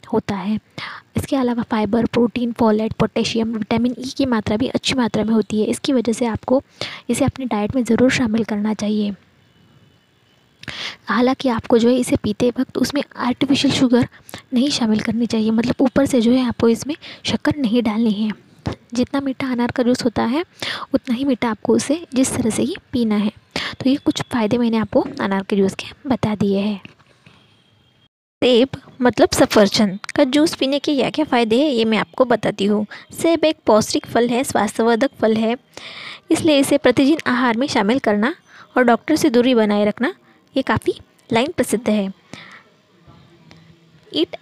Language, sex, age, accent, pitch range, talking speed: Hindi, female, 20-39, native, 220-270 Hz, 175 wpm